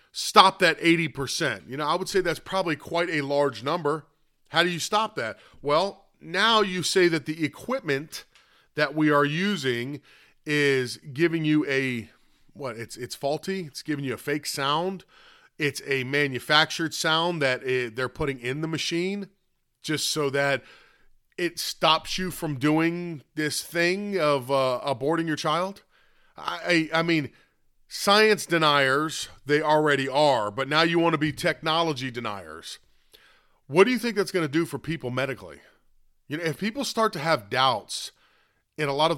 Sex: male